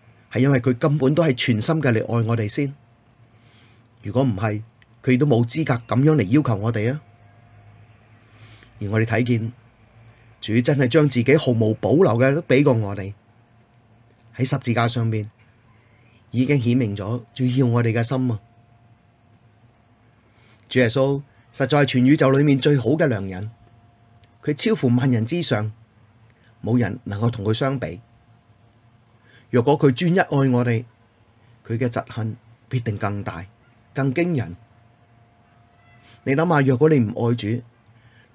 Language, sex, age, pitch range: Chinese, male, 30-49, 115-130 Hz